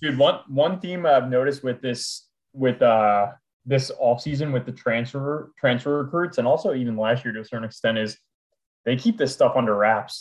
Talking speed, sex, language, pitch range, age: 195 wpm, male, English, 115-140 Hz, 20-39